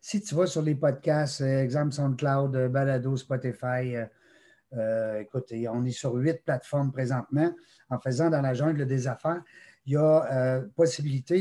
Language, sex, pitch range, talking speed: French, male, 130-160 Hz, 160 wpm